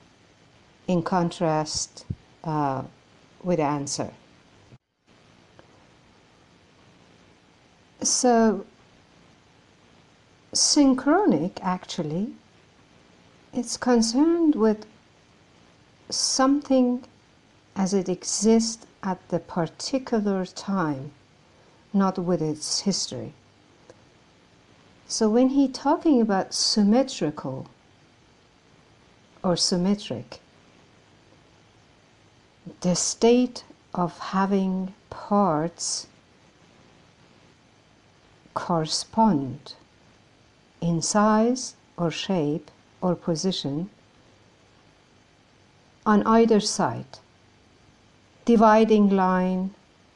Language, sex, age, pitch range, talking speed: German, female, 60-79, 165-225 Hz, 55 wpm